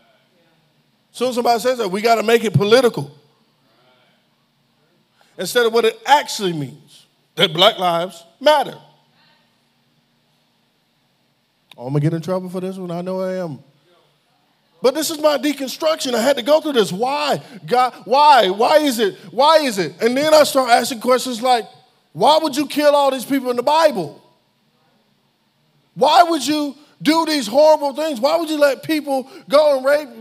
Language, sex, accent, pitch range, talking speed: English, male, American, 180-290 Hz, 170 wpm